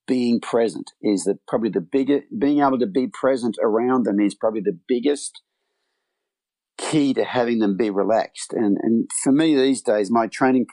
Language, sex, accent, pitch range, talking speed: English, male, Australian, 105-135 Hz, 180 wpm